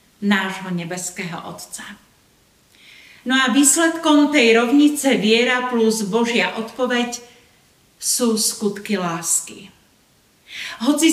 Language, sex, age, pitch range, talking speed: Slovak, female, 40-59, 205-260 Hz, 85 wpm